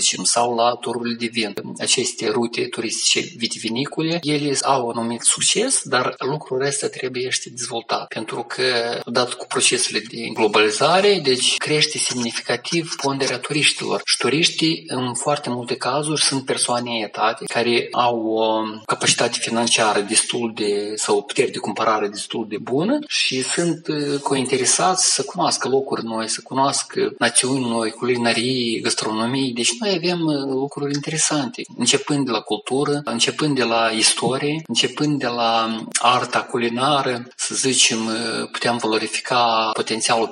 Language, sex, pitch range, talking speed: Romanian, male, 115-140 Hz, 135 wpm